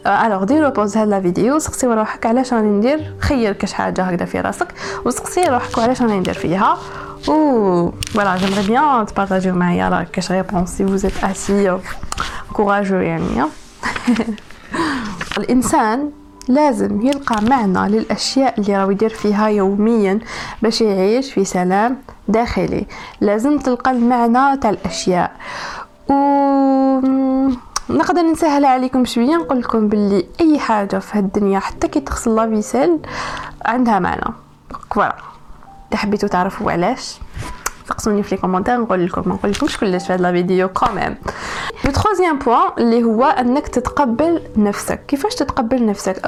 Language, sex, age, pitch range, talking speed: Arabic, female, 20-39, 200-275 Hz, 115 wpm